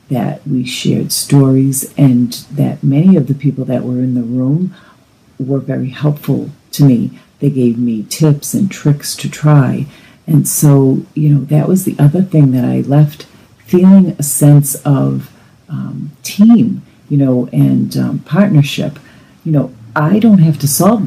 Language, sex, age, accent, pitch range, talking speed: English, female, 50-69, American, 125-150 Hz, 165 wpm